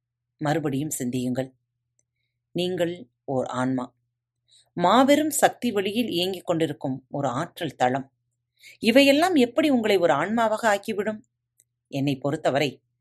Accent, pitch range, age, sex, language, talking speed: native, 125-185 Hz, 30-49, female, Tamil, 95 wpm